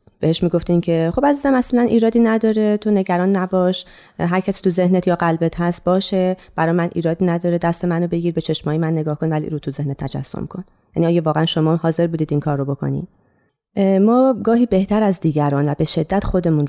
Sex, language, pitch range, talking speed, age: female, Persian, 150-195 Hz, 195 wpm, 30-49